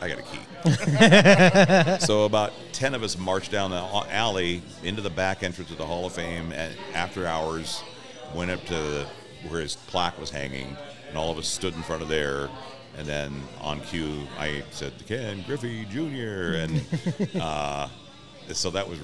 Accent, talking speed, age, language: American, 180 wpm, 50-69, English